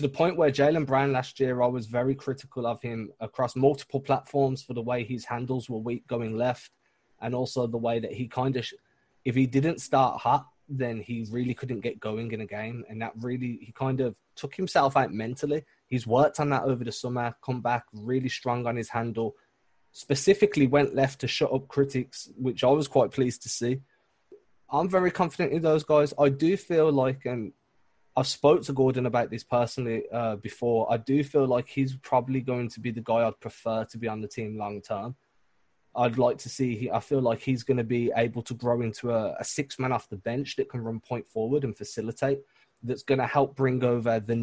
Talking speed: 215 wpm